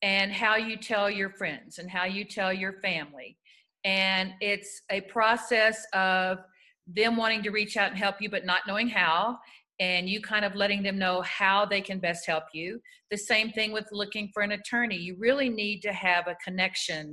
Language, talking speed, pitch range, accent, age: English, 200 wpm, 175-215 Hz, American, 50-69